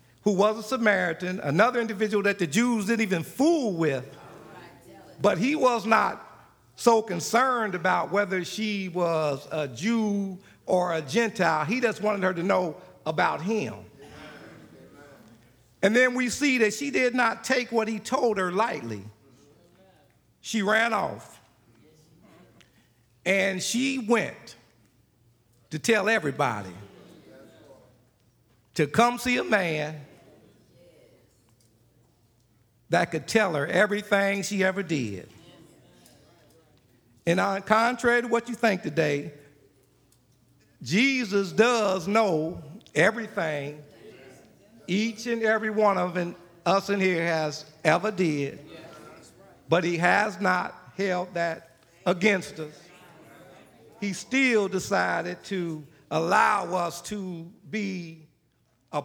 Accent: American